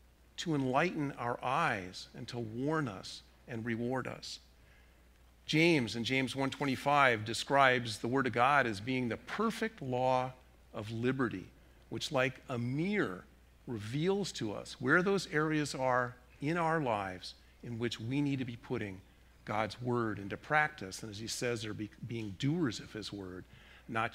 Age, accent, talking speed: 50-69, American, 155 wpm